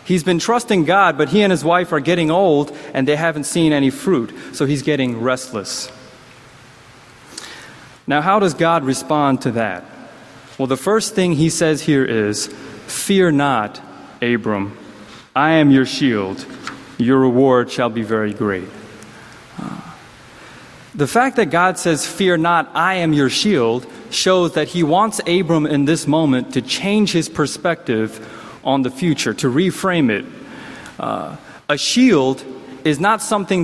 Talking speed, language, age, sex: 150 wpm, English, 30-49, male